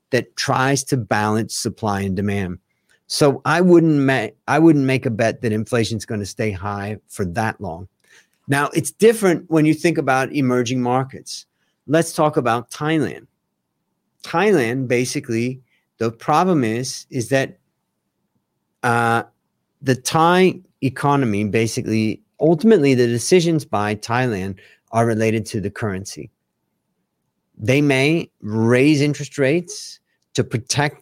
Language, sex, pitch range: Thai, male, 115-145 Hz